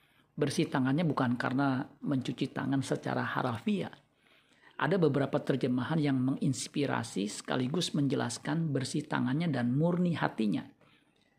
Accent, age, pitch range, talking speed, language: native, 50-69, 135-155 Hz, 105 wpm, Indonesian